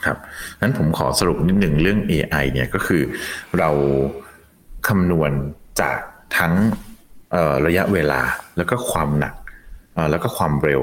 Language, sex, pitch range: Thai, male, 70-100 Hz